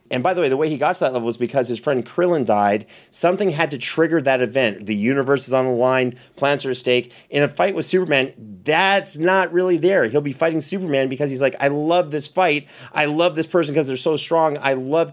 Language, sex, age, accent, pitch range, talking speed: English, male, 30-49, American, 120-155 Hz, 250 wpm